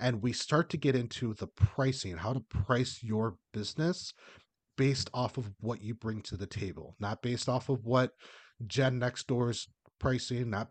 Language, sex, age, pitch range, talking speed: English, male, 30-49, 100-130 Hz, 185 wpm